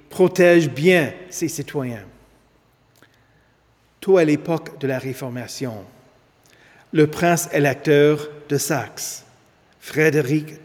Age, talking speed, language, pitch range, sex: 50-69, 90 wpm, French, 130-180 Hz, male